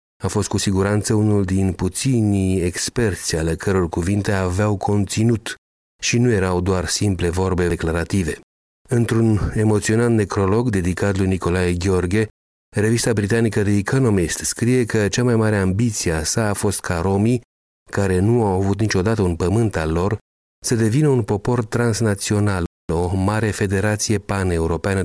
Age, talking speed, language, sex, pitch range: 40-59, 145 wpm, Romanian, male, 85-110 Hz